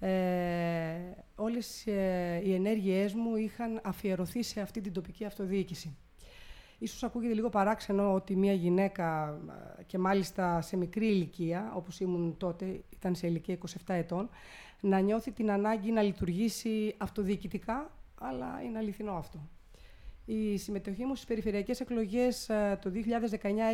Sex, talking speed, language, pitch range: female, 130 wpm, Greek, 185-220 Hz